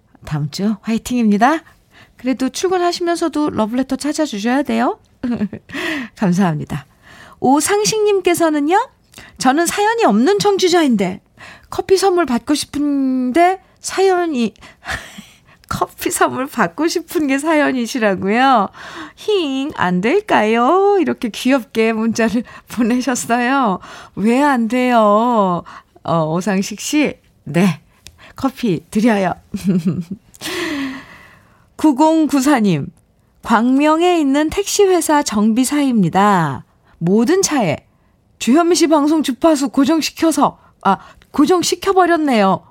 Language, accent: Korean, native